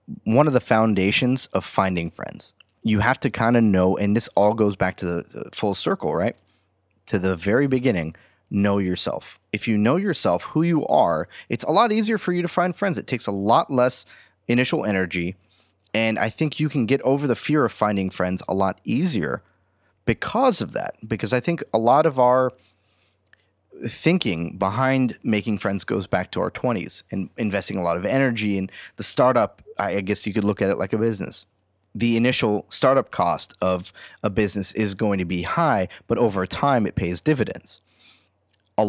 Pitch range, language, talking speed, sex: 95-120 Hz, English, 195 wpm, male